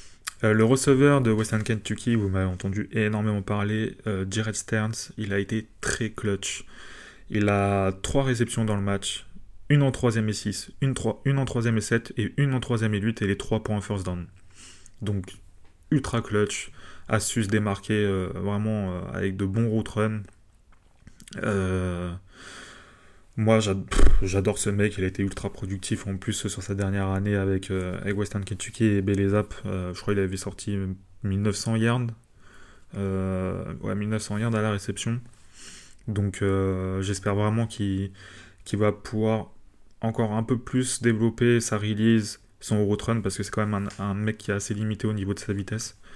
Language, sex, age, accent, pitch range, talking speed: French, male, 20-39, French, 95-110 Hz, 180 wpm